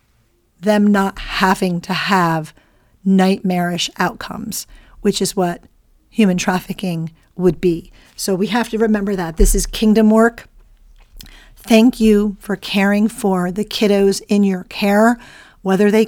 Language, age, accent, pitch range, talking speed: English, 40-59, American, 185-210 Hz, 135 wpm